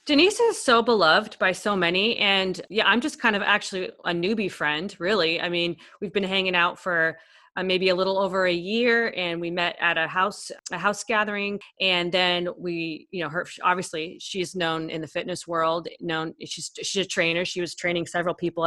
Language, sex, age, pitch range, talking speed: English, female, 30-49, 165-200 Hz, 205 wpm